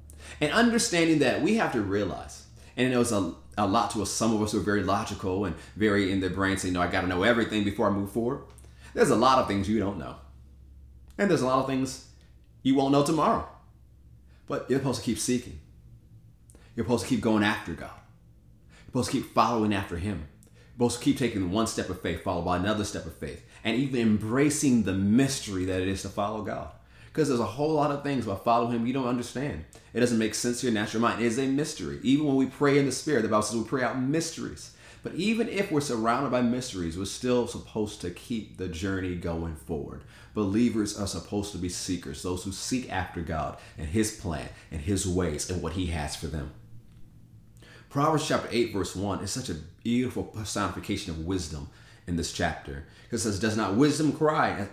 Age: 30-49